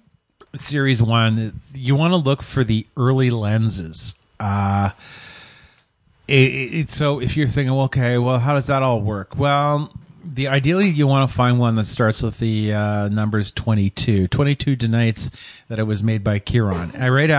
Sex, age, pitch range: male, 30-49, 105-135 Hz